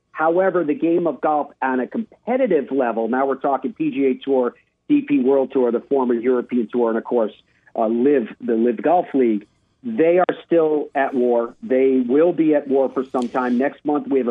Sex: male